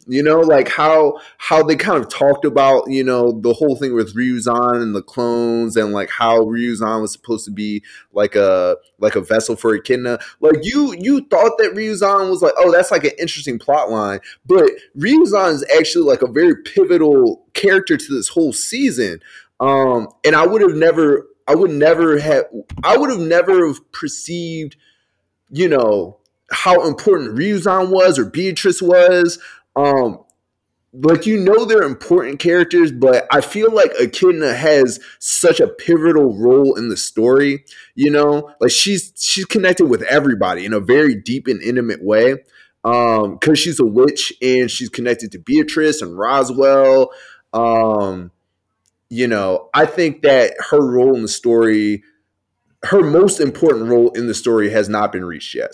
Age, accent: 20-39, American